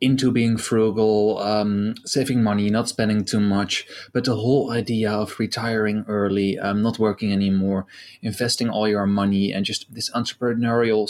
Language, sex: English, male